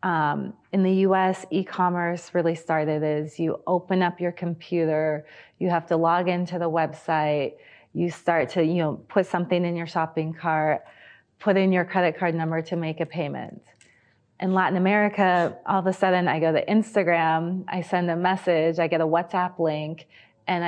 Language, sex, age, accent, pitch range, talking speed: Spanish, female, 30-49, American, 155-185 Hz, 180 wpm